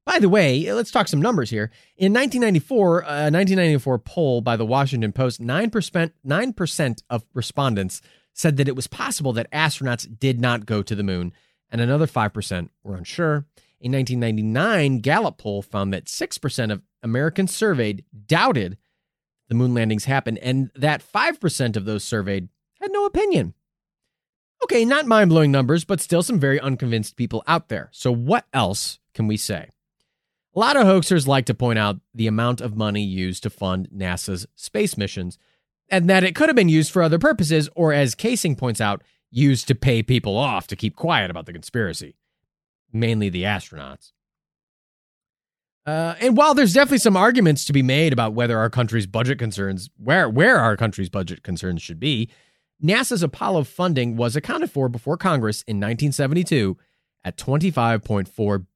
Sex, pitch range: male, 110-165 Hz